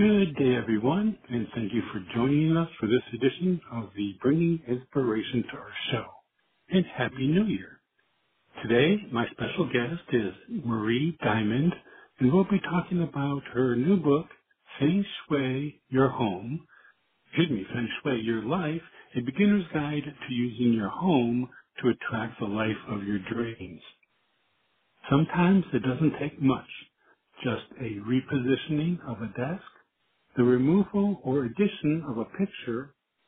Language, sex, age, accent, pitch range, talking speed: English, male, 60-79, American, 120-165 Hz, 145 wpm